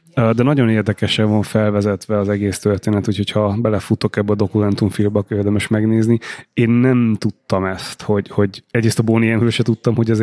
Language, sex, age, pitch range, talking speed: Hungarian, male, 20-39, 105-120 Hz, 170 wpm